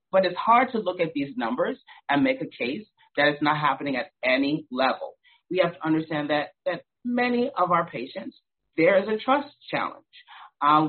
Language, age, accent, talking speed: English, 30-49, American, 195 wpm